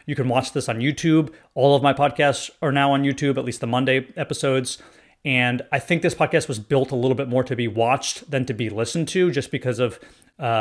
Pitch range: 135-165 Hz